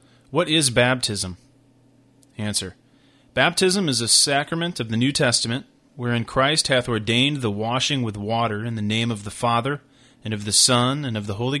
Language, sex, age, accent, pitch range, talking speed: English, male, 30-49, American, 115-135 Hz, 175 wpm